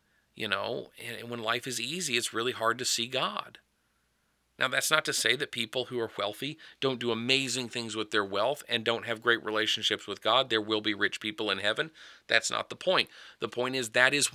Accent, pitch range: American, 110-135 Hz